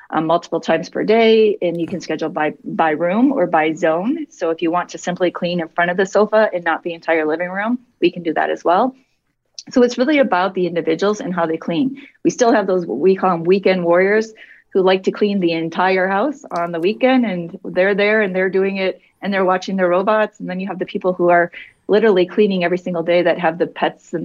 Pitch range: 170-205 Hz